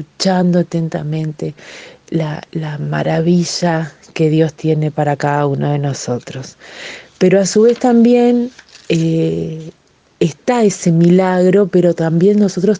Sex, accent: female, Argentinian